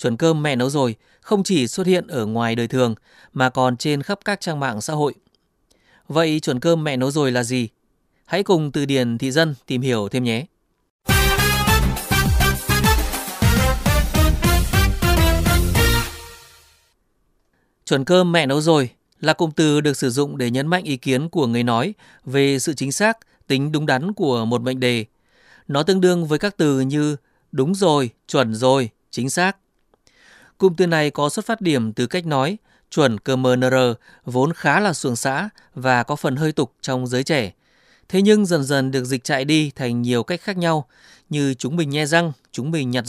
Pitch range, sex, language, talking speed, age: 125-165 Hz, male, Vietnamese, 180 wpm, 20-39